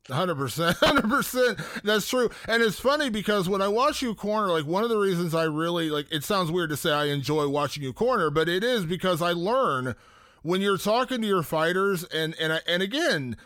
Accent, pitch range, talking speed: American, 160-215 Hz, 220 wpm